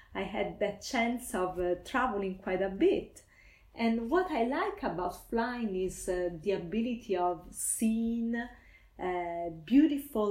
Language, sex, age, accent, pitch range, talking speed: English, female, 30-49, Italian, 180-220 Hz, 140 wpm